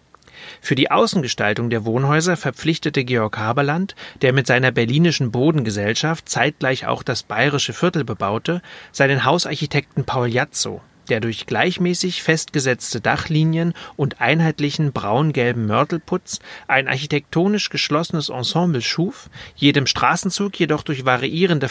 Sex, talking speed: male, 115 wpm